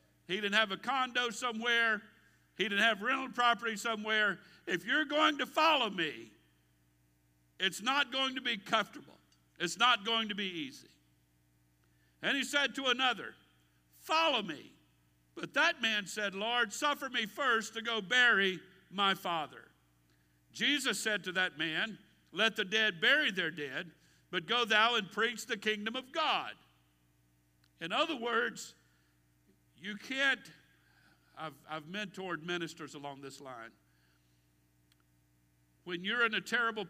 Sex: male